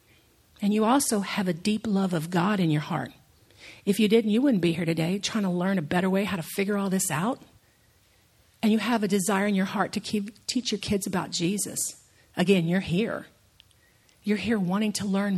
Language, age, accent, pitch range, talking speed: English, 50-69, American, 190-235 Hz, 210 wpm